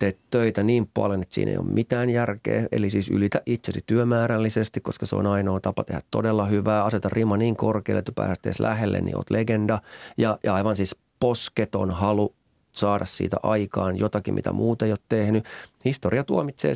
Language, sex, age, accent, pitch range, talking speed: Finnish, male, 40-59, native, 100-115 Hz, 185 wpm